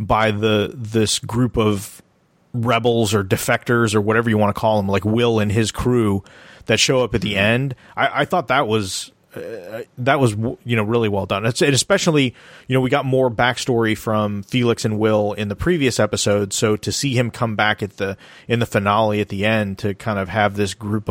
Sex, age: male, 30-49